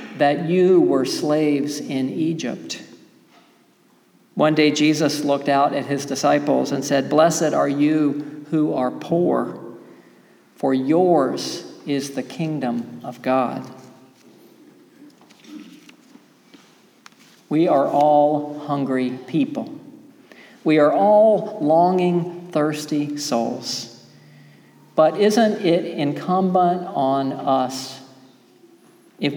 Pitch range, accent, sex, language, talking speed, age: 140-175 Hz, American, male, English, 95 wpm, 50-69